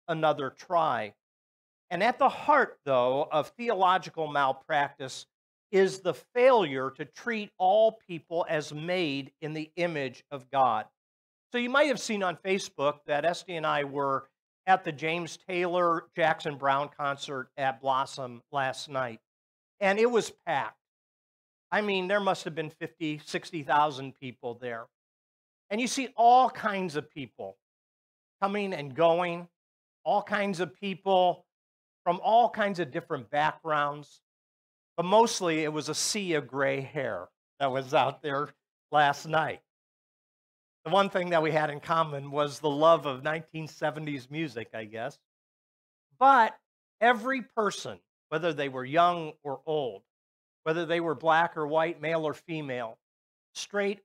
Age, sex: 50-69, male